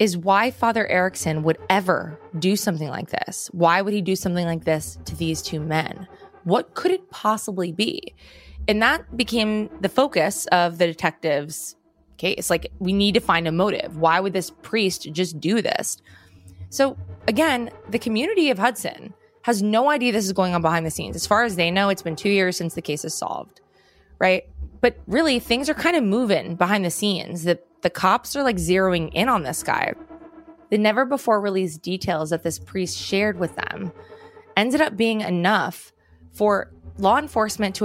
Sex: female